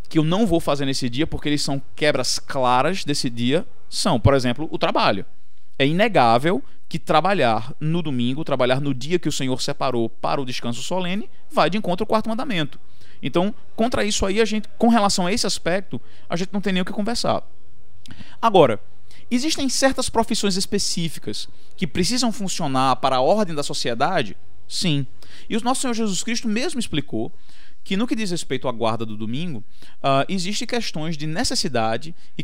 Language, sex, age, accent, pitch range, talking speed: Portuguese, male, 20-39, Brazilian, 125-190 Hz, 180 wpm